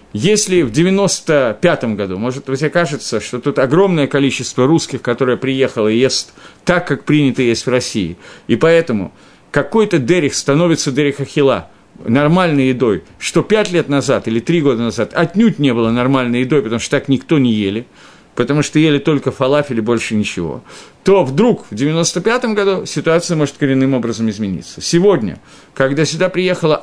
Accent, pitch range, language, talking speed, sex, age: native, 120-165 Hz, Russian, 160 wpm, male, 50-69